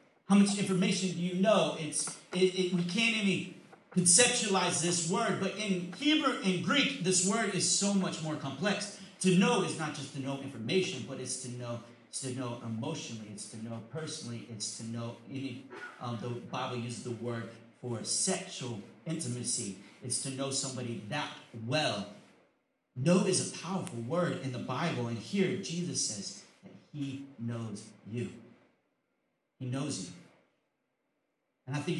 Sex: male